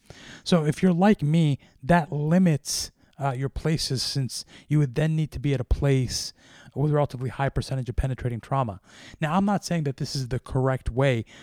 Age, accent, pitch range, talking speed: 30-49, American, 125-150 Hz, 200 wpm